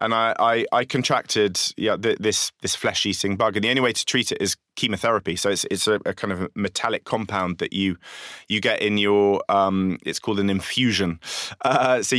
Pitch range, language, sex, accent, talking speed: 95-110 Hz, English, male, British, 210 wpm